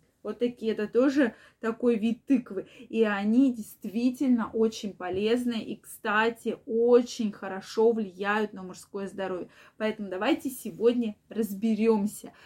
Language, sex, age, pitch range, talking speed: Russian, female, 20-39, 220-280 Hz, 115 wpm